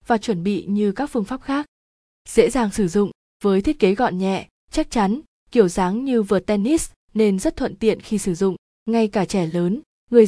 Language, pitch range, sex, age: Vietnamese, 190-230 Hz, female, 20-39